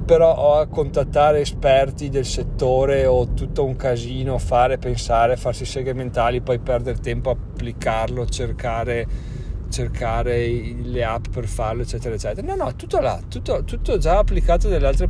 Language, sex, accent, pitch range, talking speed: Italian, male, native, 115-140 Hz, 150 wpm